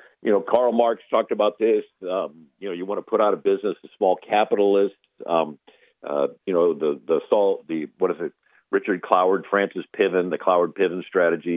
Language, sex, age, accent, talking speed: English, male, 50-69, American, 200 wpm